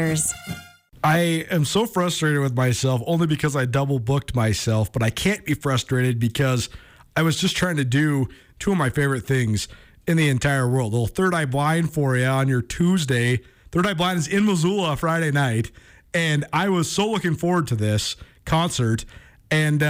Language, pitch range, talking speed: English, 125-165 Hz, 185 wpm